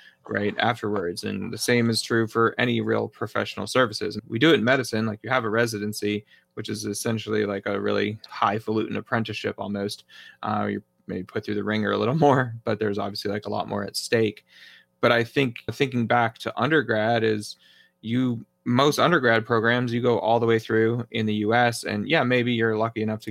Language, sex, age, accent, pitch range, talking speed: English, male, 20-39, American, 105-115 Hz, 200 wpm